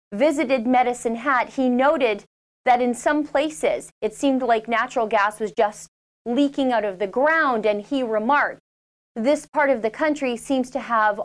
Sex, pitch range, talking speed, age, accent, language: female, 215-270 Hz, 170 wpm, 30-49, American, English